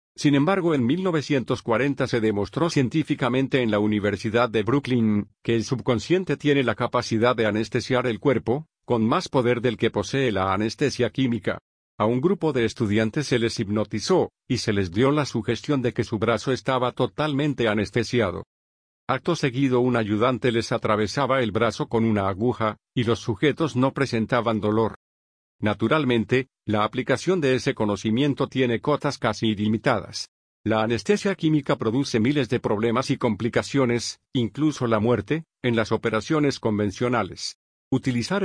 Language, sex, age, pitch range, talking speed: Spanish, male, 50-69, 110-135 Hz, 150 wpm